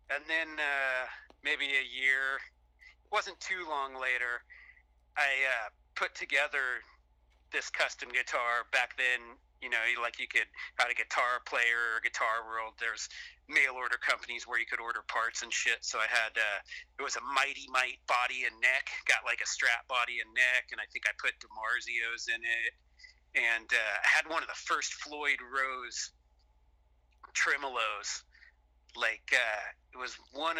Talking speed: 170 wpm